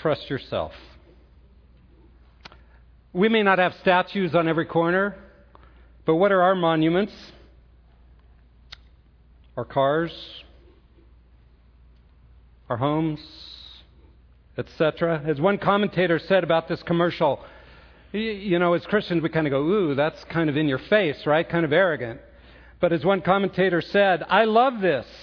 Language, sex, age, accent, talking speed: English, male, 50-69, American, 130 wpm